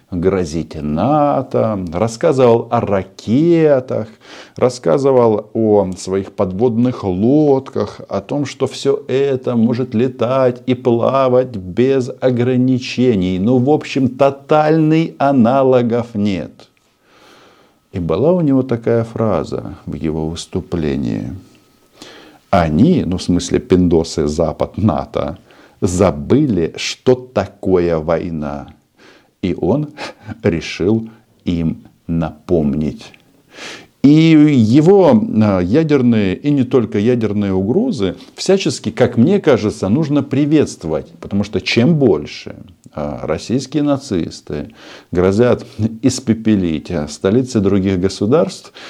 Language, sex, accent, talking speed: Russian, male, native, 95 wpm